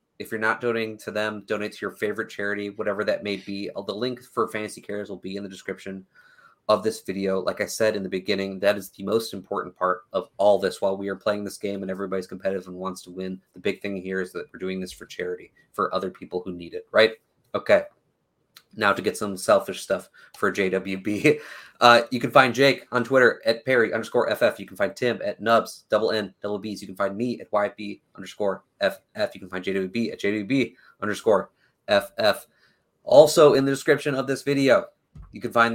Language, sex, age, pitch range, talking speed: English, male, 20-39, 100-130 Hz, 220 wpm